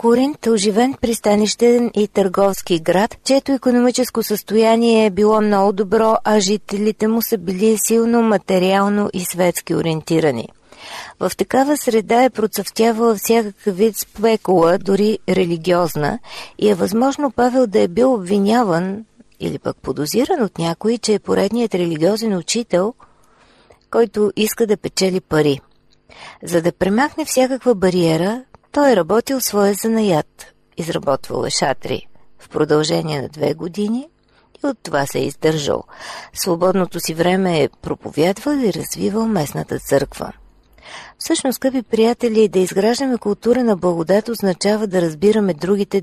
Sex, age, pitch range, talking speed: female, 40-59, 185-230 Hz, 130 wpm